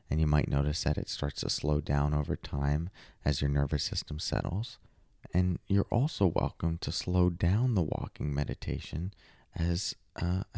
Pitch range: 75-90 Hz